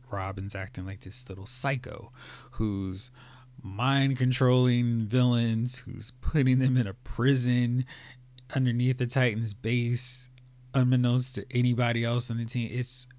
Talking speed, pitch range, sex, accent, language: 125 wpm, 110-130 Hz, male, American, English